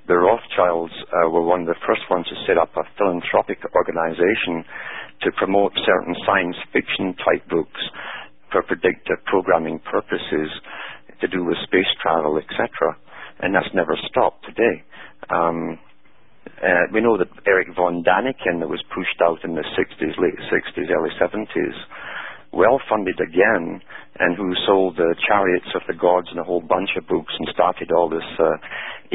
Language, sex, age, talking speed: English, male, 50-69, 155 wpm